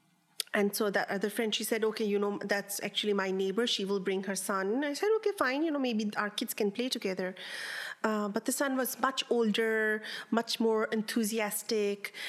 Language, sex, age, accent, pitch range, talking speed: English, female, 30-49, Indian, 200-230 Hz, 200 wpm